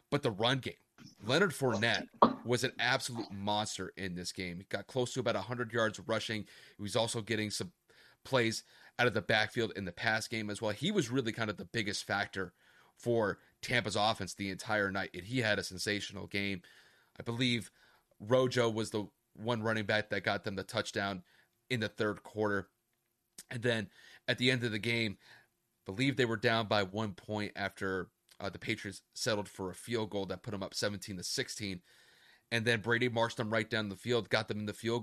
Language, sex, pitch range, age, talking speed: English, male, 105-125 Hz, 30-49, 205 wpm